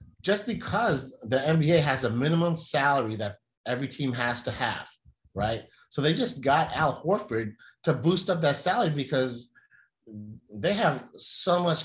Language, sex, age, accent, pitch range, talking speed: English, male, 30-49, American, 110-140 Hz, 155 wpm